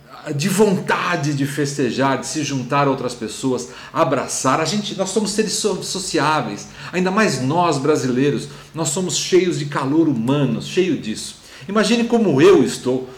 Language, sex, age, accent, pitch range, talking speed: Portuguese, male, 40-59, Brazilian, 135-180 Hz, 150 wpm